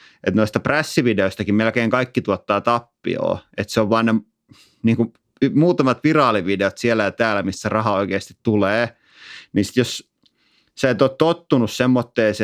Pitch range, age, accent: 100-120 Hz, 30-49, native